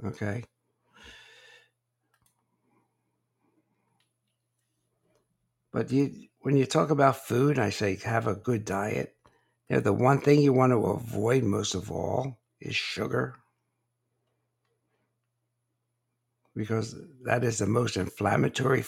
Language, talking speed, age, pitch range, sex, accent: English, 110 wpm, 60-79, 110-130 Hz, male, American